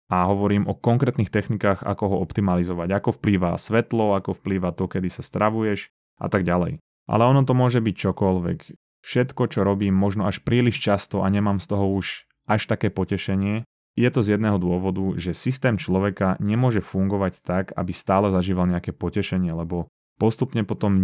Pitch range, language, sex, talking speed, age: 95-105 Hz, Slovak, male, 170 wpm, 20-39